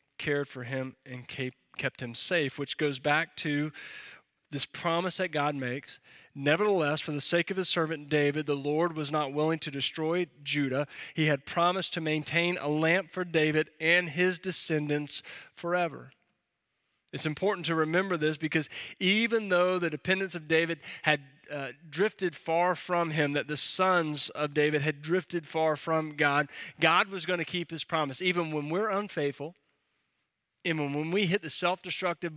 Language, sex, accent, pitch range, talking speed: English, male, American, 145-180 Hz, 165 wpm